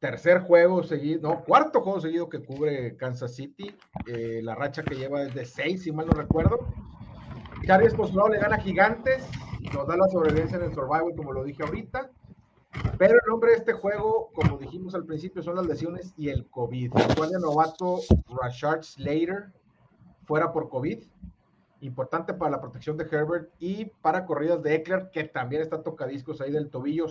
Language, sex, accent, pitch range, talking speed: Spanish, male, Mexican, 140-175 Hz, 180 wpm